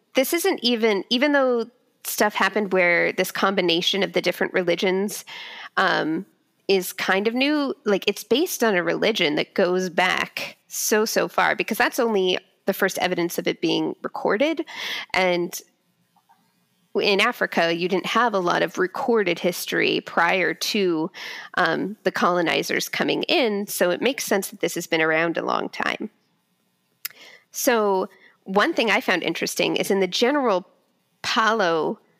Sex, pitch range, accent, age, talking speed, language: female, 180-235 Hz, American, 20-39, 155 wpm, English